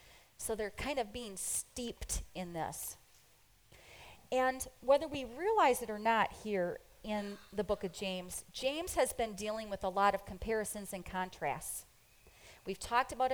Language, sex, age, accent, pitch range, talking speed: English, female, 30-49, American, 195-275 Hz, 155 wpm